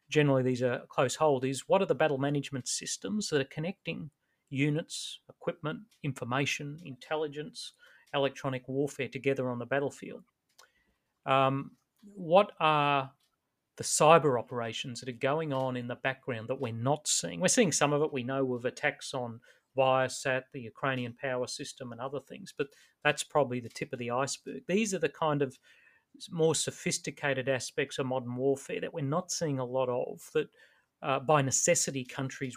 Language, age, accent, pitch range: English, 40-59, Australian, 130-150 Hz